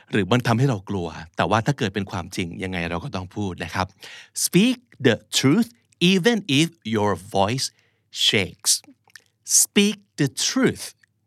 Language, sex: Thai, male